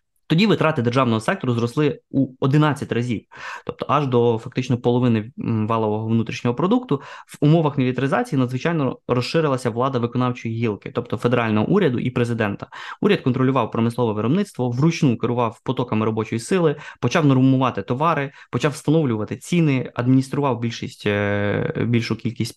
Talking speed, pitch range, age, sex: 130 wpm, 115-140 Hz, 20-39, male